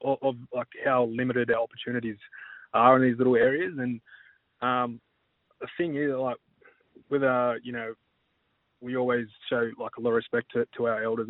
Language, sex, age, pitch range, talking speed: English, male, 20-39, 115-125 Hz, 175 wpm